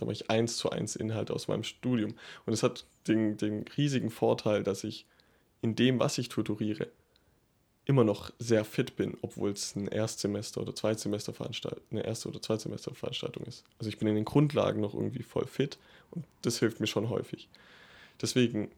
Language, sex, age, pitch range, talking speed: German, male, 20-39, 105-120 Hz, 185 wpm